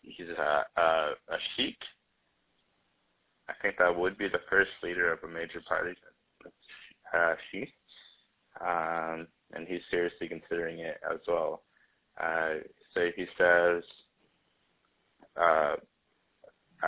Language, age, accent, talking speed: English, 20-39, American, 115 wpm